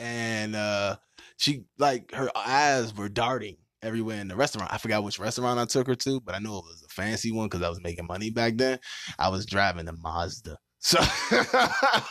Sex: male